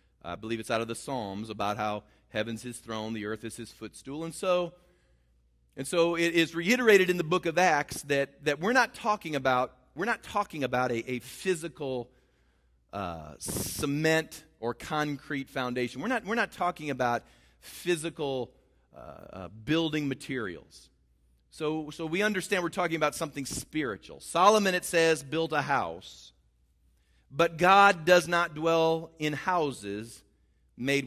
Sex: male